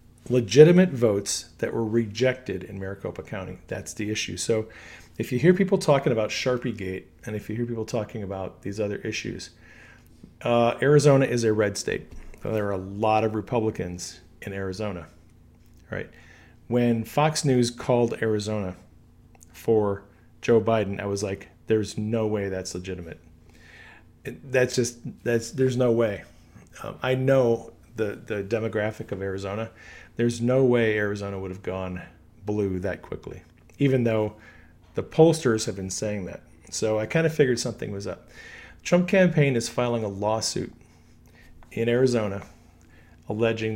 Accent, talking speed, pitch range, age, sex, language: American, 150 wpm, 95-120 Hz, 40-59, male, English